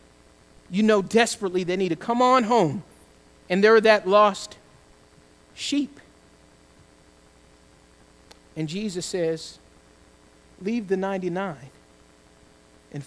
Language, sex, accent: English, male, American